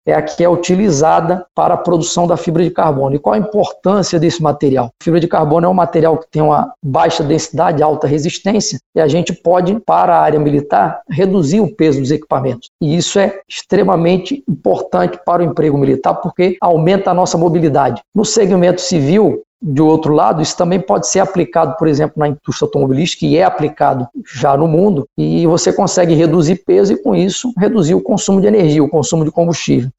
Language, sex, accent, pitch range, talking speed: Portuguese, male, Brazilian, 155-185 Hz, 195 wpm